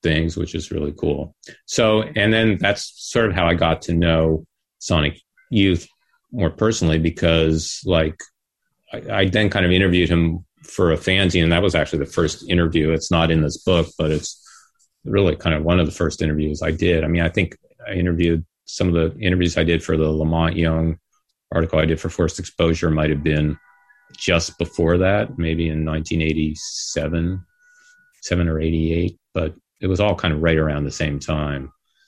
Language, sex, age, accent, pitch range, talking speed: English, male, 40-59, American, 80-90 Hz, 195 wpm